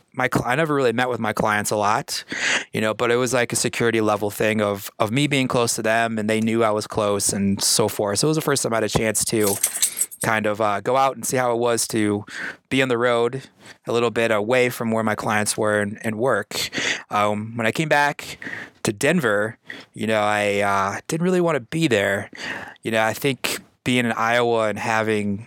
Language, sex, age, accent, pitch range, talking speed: English, male, 30-49, American, 105-130 Hz, 235 wpm